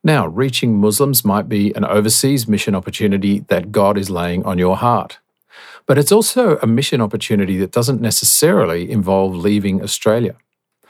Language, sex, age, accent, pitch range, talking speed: English, male, 50-69, Australian, 100-135 Hz, 155 wpm